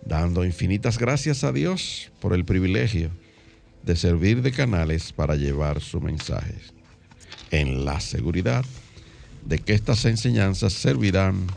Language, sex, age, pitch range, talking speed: Spanish, male, 60-79, 80-110 Hz, 125 wpm